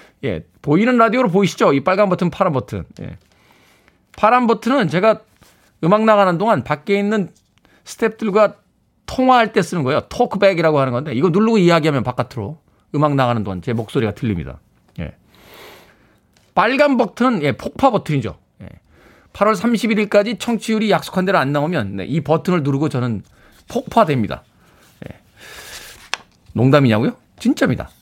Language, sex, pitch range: Korean, male, 125-210 Hz